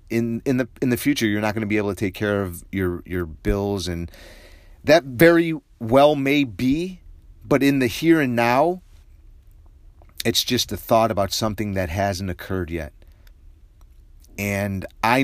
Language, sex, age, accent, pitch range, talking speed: English, male, 30-49, American, 90-115 Hz, 170 wpm